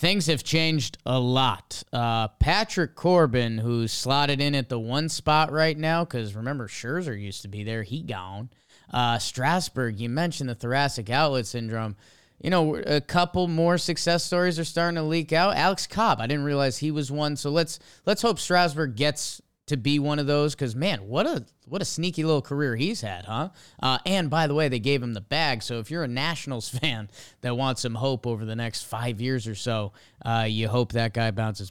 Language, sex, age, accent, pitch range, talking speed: English, male, 20-39, American, 115-155 Hz, 210 wpm